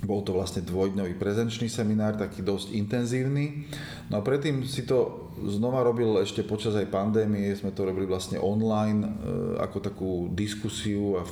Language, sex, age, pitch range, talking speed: Slovak, male, 30-49, 95-115 Hz, 160 wpm